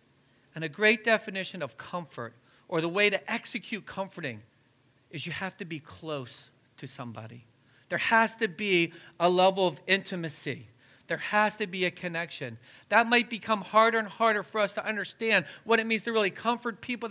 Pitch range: 140-200 Hz